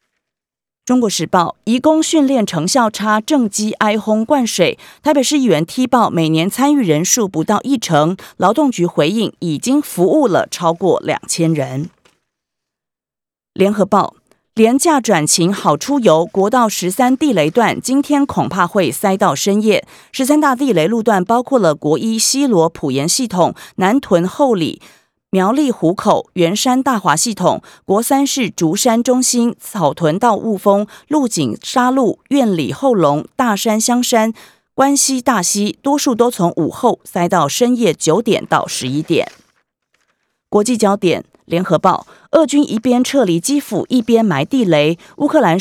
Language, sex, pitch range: Chinese, female, 175-260 Hz